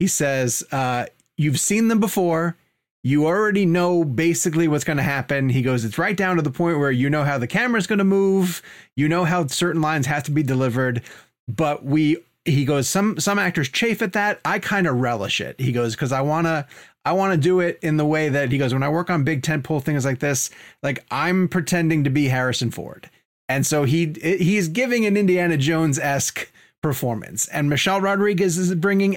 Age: 30-49